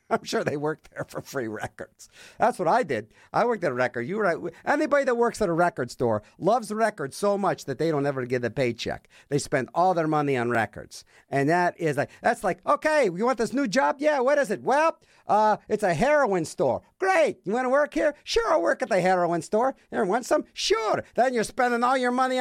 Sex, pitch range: male, 160-265 Hz